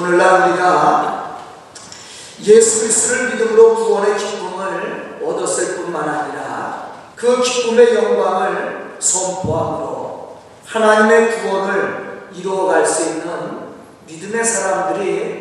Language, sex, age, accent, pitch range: Korean, male, 40-59, native, 210-345 Hz